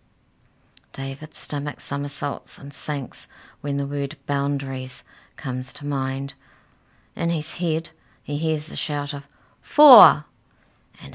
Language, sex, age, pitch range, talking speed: English, female, 50-69, 140-165 Hz, 120 wpm